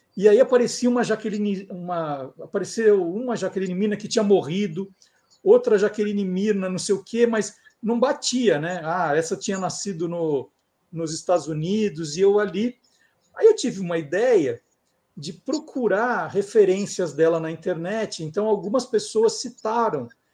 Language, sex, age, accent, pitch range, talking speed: Portuguese, male, 50-69, Brazilian, 190-250 Hz, 150 wpm